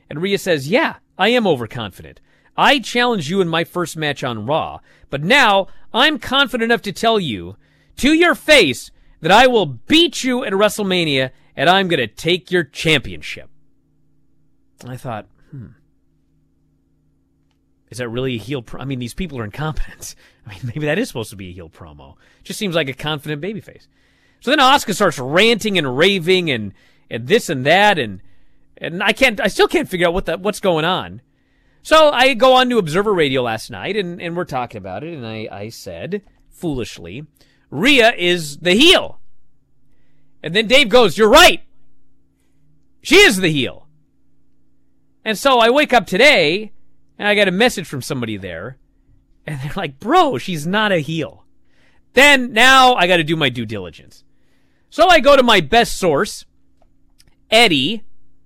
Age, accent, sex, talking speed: 40-59, American, male, 175 wpm